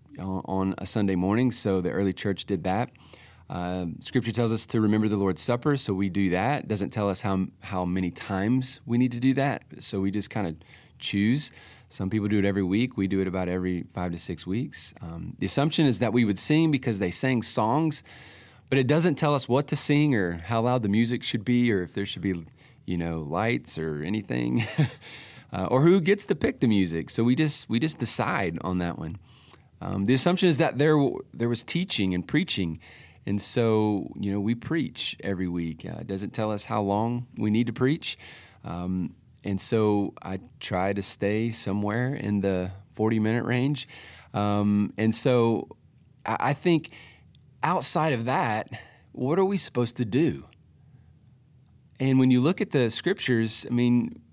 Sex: male